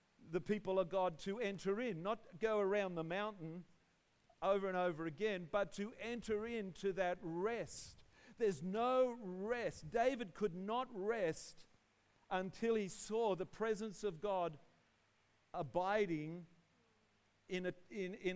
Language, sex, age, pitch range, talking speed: English, male, 50-69, 185-240 Hz, 125 wpm